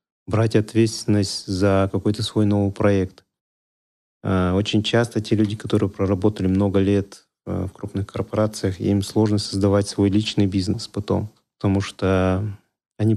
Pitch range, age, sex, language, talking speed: 100-115 Hz, 30-49, male, Russian, 130 wpm